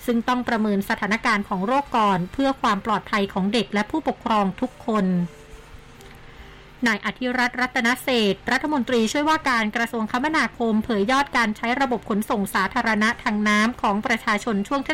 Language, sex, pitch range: Thai, female, 210-250 Hz